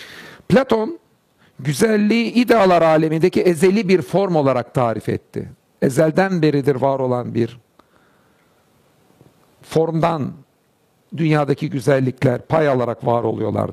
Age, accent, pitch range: 60-79, native, 140-180 Hz